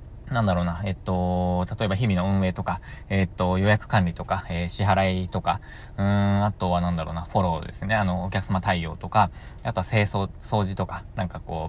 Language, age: Japanese, 20-39